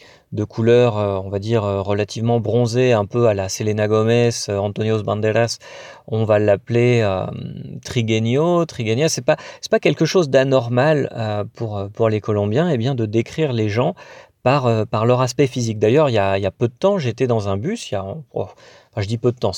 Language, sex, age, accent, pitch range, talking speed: French, male, 40-59, French, 110-140 Hz, 215 wpm